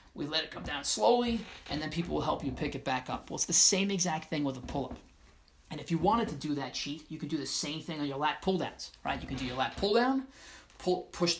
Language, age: English, 30-49